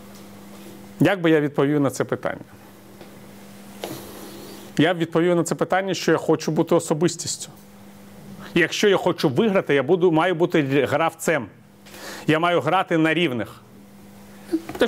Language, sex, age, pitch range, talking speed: Ukrainian, male, 40-59, 120-170 Hz, 135 wpm